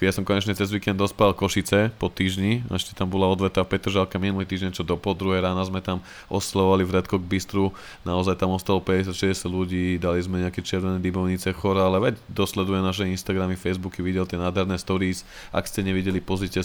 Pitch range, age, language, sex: 90-105 Hz, 20-39, Slovak, male